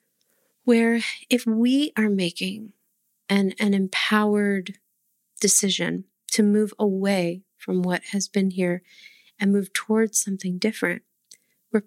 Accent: American